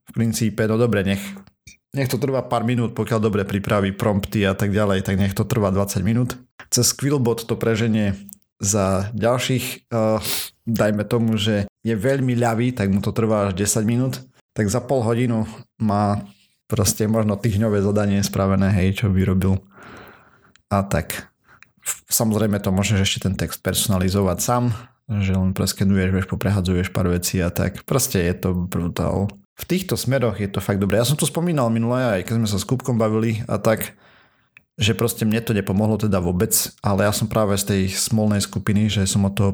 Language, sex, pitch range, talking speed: Slovak, male, 95-110 Hz, 180 wpm